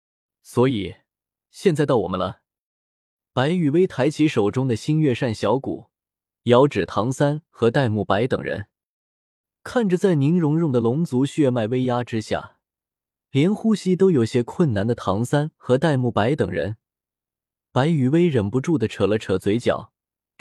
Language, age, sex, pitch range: Chinese, 20-39, male, 110-155 Hz